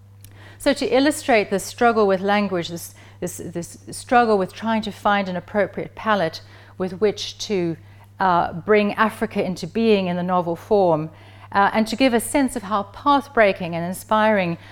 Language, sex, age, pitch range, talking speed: English, female, 40-59, 165-220 Hz, 165 wpm